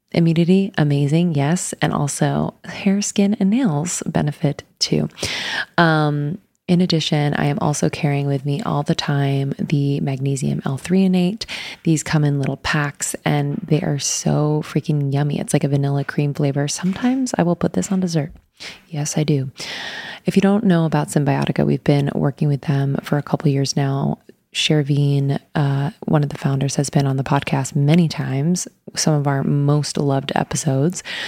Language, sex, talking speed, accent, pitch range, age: English, female, 170 wpm, American, 140-180 Hz, 20-39